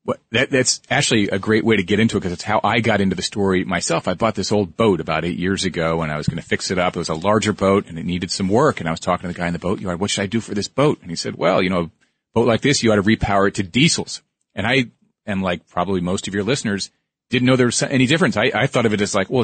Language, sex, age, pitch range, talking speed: English, male, 40-59, 95-120 Hz, 325 wpm